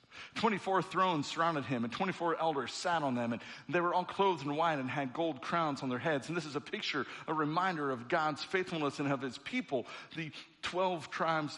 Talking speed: 215 wpm